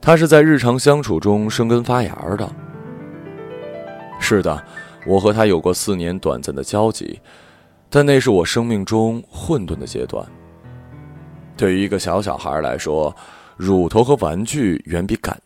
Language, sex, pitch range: Chinese, male, 85-115 Hz